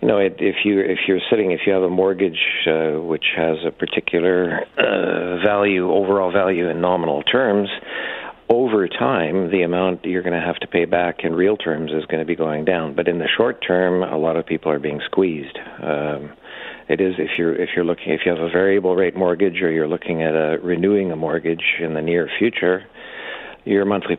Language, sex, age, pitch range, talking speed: English, male, 50-69, 80-90 Hz, 215 wpm